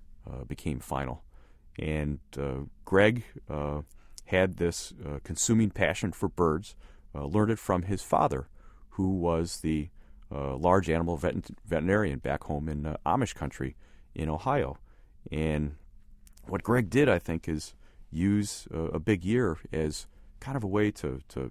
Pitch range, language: 75-110 Hz, English